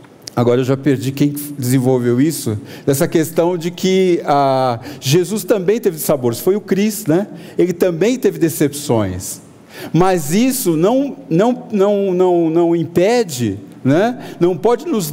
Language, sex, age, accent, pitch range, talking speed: Portuguese, male, 50-69, Brazilian, 150-225 Hz, 145 wpm